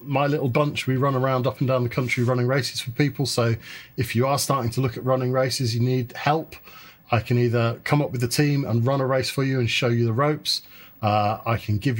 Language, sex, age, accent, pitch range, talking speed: English, male, 40-59, British, 115-145 Hz, 255 wpm